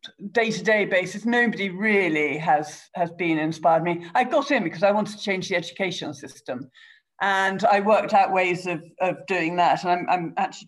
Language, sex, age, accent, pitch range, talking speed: English, female, 50-69, British, 165-210 Hz, 185 wpm